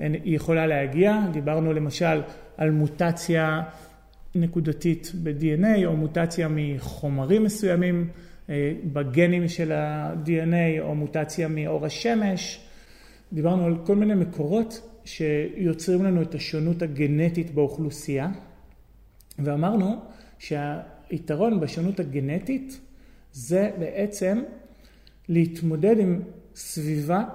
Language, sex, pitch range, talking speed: Hebrew, male, 150-190 Hz, 90 wpm